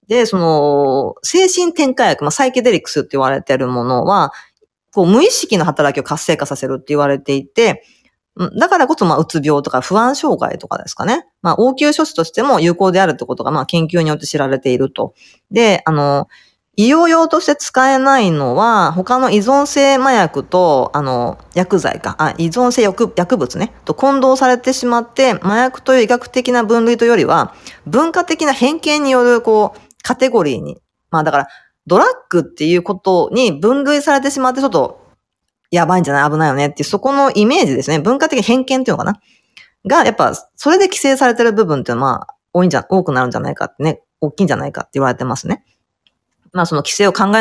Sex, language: female, Japanese